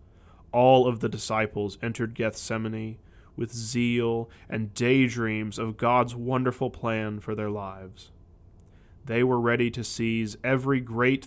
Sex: male